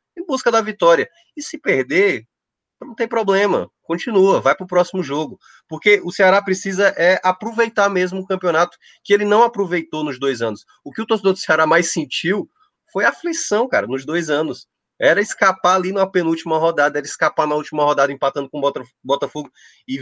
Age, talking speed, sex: 20-39, 185 wpm, male